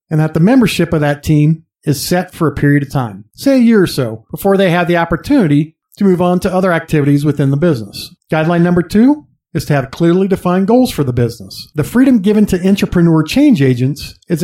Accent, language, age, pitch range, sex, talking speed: American, English, 50-69, 150-195 Hz, male, 220 wpm